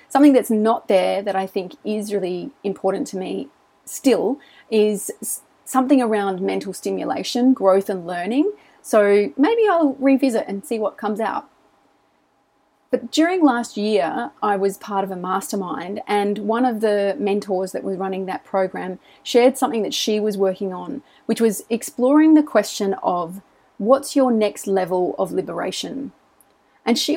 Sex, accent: female, Australian